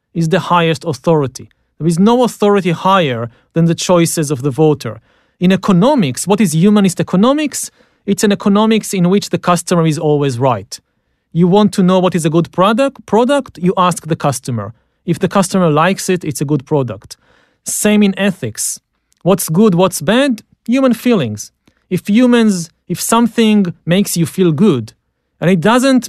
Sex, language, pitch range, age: male, English, 160-220 Hz, 40-59